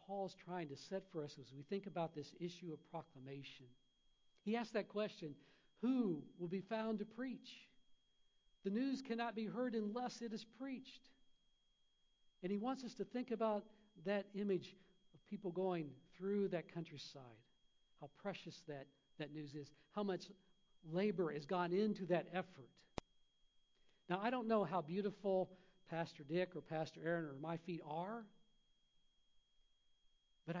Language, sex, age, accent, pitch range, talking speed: English, male, 60-79, American, 160-205 Hz, 155 wpm